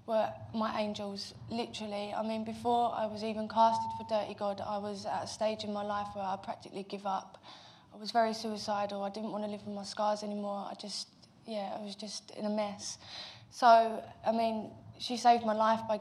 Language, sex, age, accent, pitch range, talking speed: English, female, 20-39, British, 210-235 Hz, 215 wpm